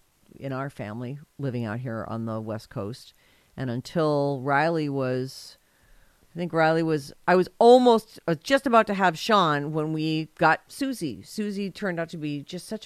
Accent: American